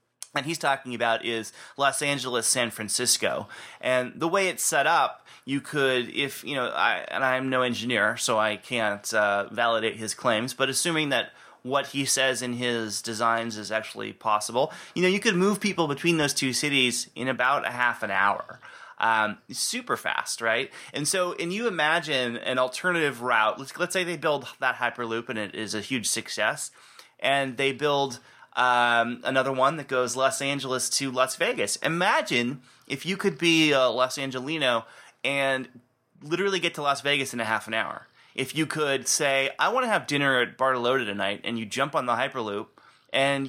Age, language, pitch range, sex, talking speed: 30-49, English, 120-145 Hz, male, 185 wpm